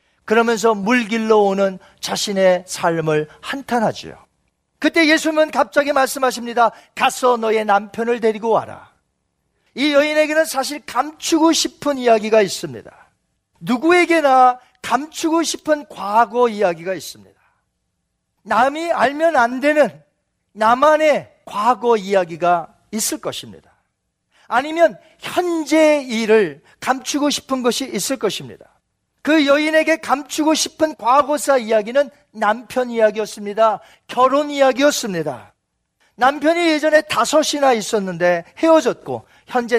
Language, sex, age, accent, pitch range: Korean, male, 40-59, native, 205-295 Hz